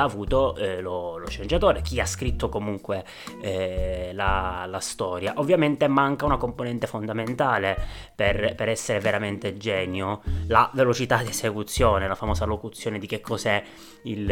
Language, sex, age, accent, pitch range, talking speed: Italian, male, 20-39, native, 95-115 Hz, 145 wpm